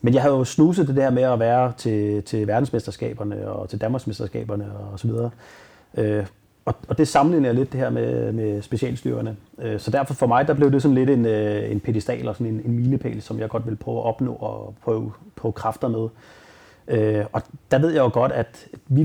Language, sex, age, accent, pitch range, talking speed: Danish, male, 30-49, native, 110-135 Hz, 200 wpm